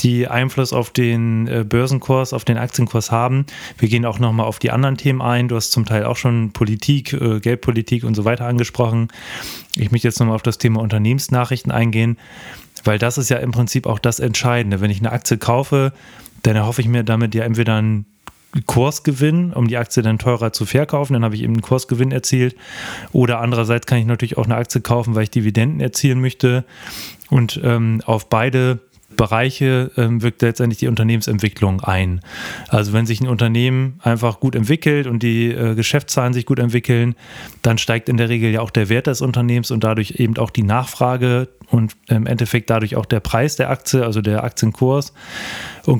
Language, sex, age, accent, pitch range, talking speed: German, male, 30-49, German, 115-125 Hz, 190 wpm